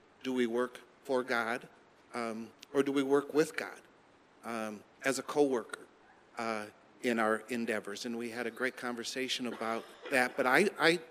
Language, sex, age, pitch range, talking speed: English, male, 50-69, 115-140 Hz, 165 wpm